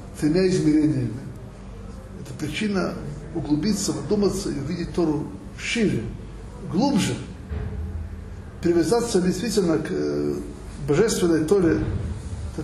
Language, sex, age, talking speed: Russian, male, 60-79, 80 wpm